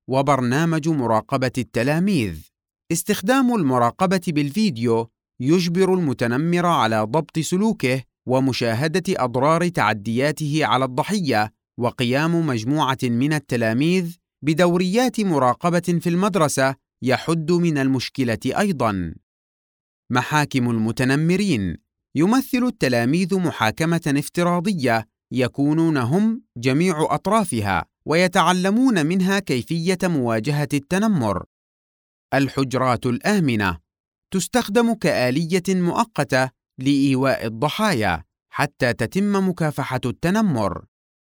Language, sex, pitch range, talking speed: Arabic, male, 125-180 Hz, 75 wpm